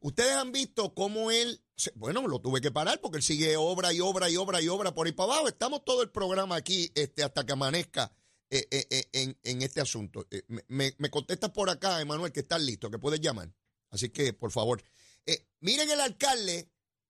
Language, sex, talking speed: Spanish, male, 215 wpm